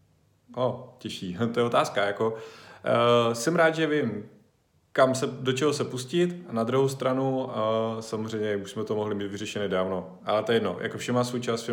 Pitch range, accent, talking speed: 105-125 Hz, native, 195 wpm